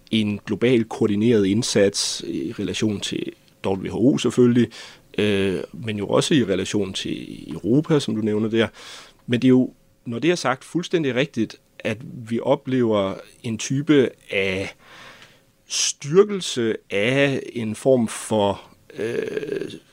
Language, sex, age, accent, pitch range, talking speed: Danish, male, 30-49, native, 105-125 Hz, 130 wpm